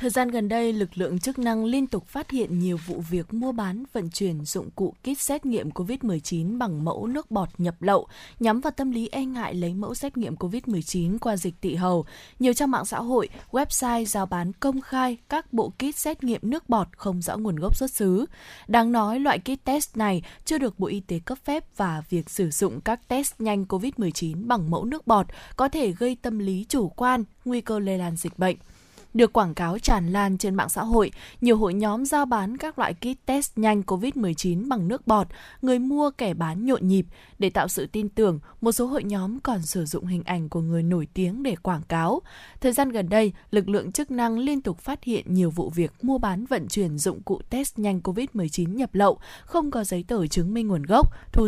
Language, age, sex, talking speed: Vietnamese, 20-39, female, 225 wpm